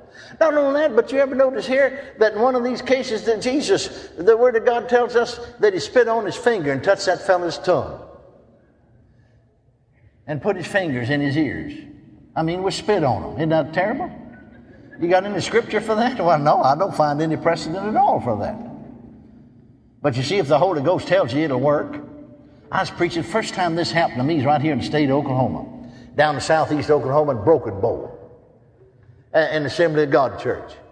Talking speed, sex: 210 wpm, male